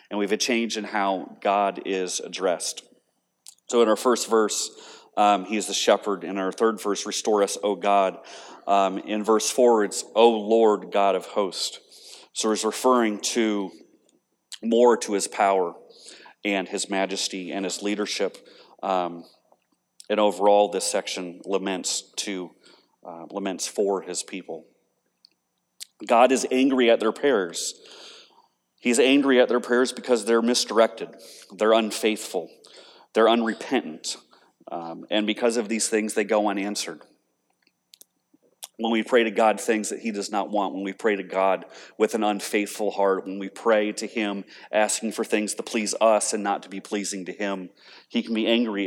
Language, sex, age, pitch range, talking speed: English, male, 30-49, 100-115 Hz, 160 wpm